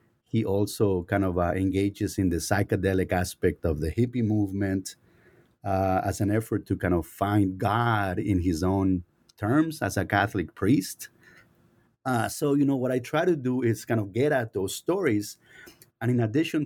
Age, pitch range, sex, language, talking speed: 30-49, 100-120 Hz, male, English, 180 wpm